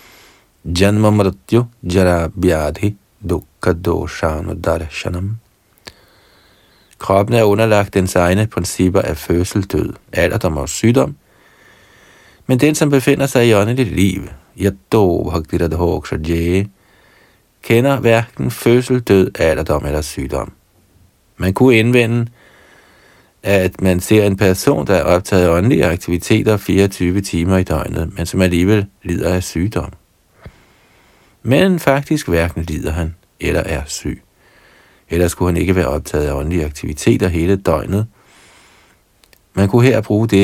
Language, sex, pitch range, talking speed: Danish, male, 85-105 Hz, 110 wpm